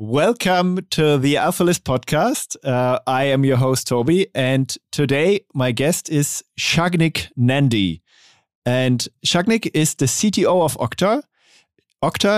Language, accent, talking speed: English, German, 125 wpm